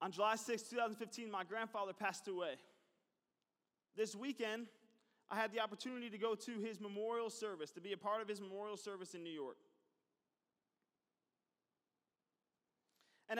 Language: English